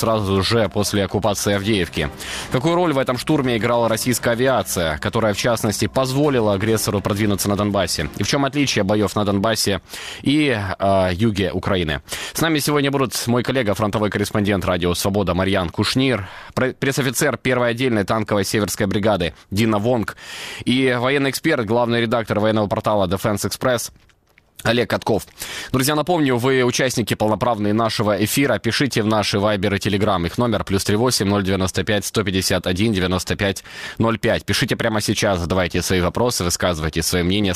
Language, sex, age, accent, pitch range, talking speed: Ukrainian, male, 20-39, native, 95-120 Hz, 140 wpm